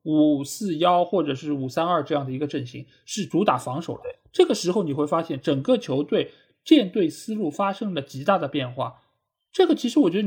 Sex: male